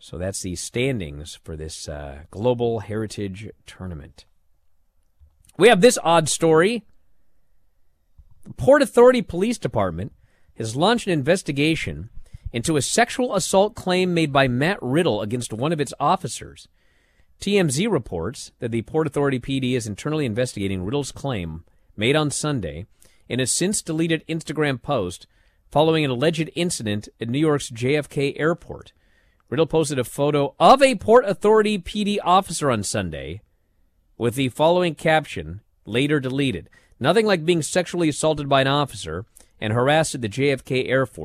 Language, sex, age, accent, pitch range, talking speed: English, male, 40-59, American, 100-155 Hz, 145 wpm